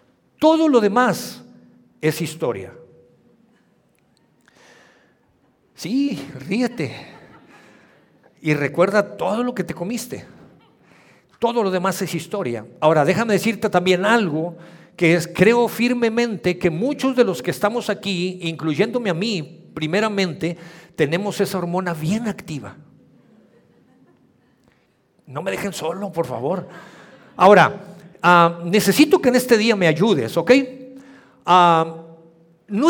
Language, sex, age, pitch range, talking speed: Spanish, male, 50-69, 170-230 Hz, 110 wpm